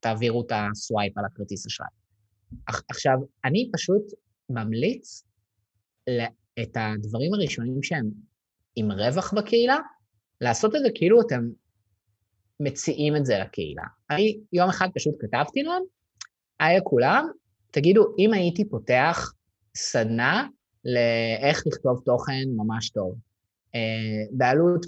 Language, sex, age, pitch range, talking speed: Hebrew, male, 20-39, 120-175 Hz, 110 wpm